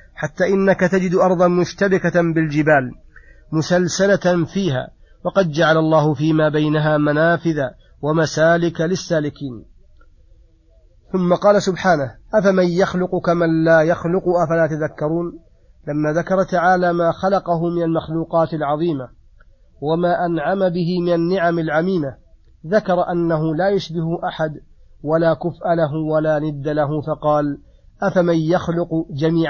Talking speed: 110 wpm